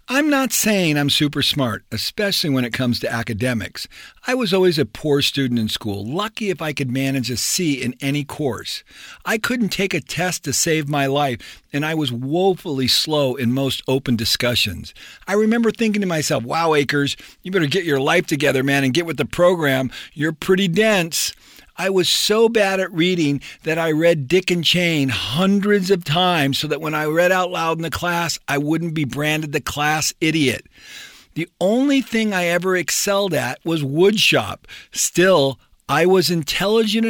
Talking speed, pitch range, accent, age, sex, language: 185 wpm, 135-180 Hz, American, 50-69, male, English